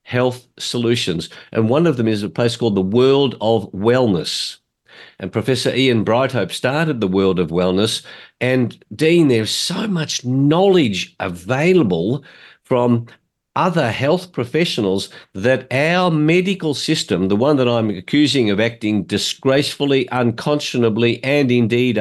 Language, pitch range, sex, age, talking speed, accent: English, 110-145 Hz, male, 50-69, 135 wpm, Australian